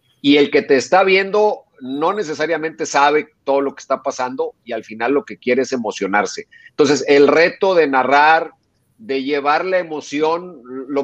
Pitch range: 130-160 Hz